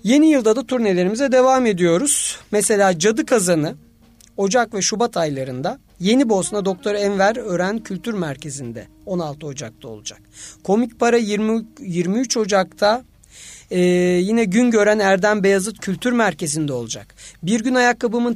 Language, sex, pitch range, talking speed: Turkish, male, 170-235 Hz, 130 wpm